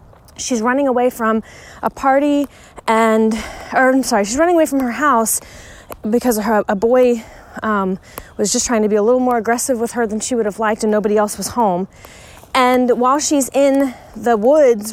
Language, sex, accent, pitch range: English, female, American, 215-255 Hz